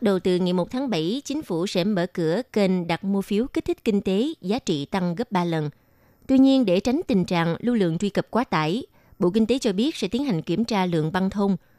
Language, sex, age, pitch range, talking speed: Vietnamese, female, 20-39, 175-235 Hz, 255 wpm